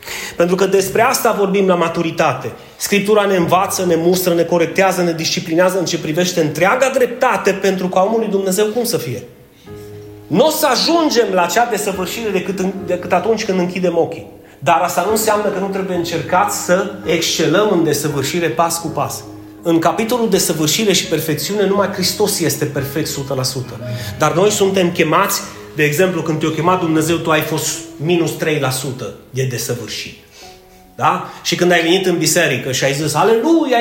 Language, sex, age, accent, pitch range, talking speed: Romanian, male, 30-49, native, 150-200 Hz, 170 wpm